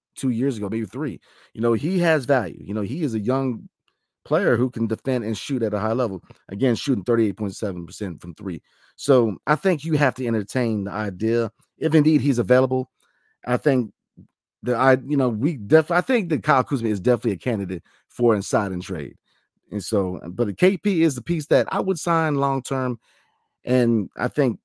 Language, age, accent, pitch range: English, 30-49, American, 105-140 Hz